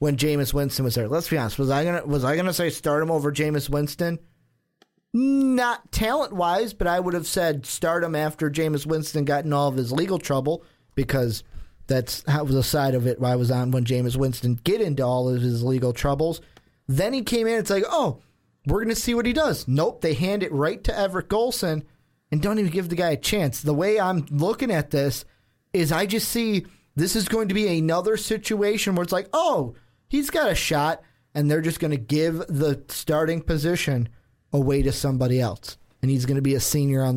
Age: 30-49